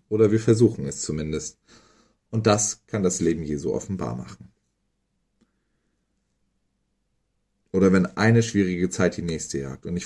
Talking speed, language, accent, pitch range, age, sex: 135 wpm, German, German, 85-105 Hz, 40-59, male